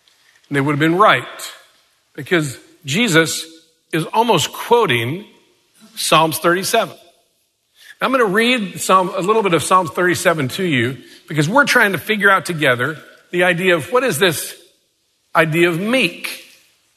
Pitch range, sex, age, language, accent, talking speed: 145-195 Hz, male, 50-69, English, American, 140 wpm